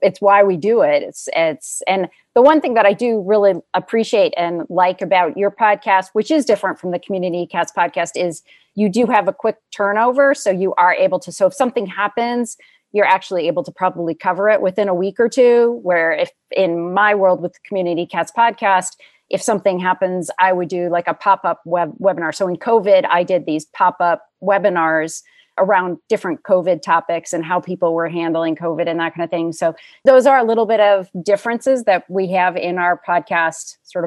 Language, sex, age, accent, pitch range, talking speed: English, female, 30-49, American, 175-215 Hz, 205 wpm